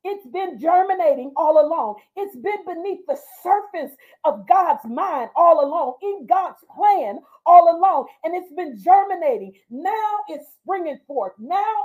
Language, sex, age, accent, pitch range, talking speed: English, female, 40-59, American, 275-385 Hz, 145 wpm